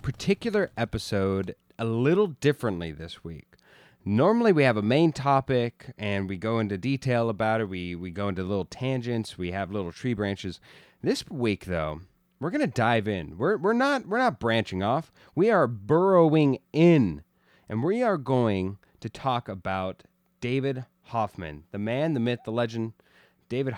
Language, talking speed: English, 165 wpm